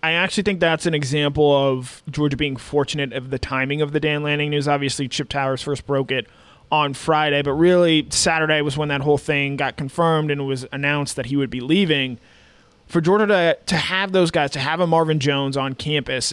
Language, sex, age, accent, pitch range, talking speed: English, male, 20-39, American, 140-155 Hz, 215 wpm